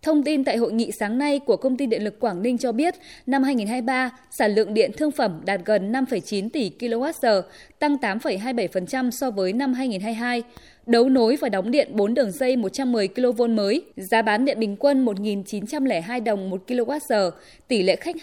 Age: 20-39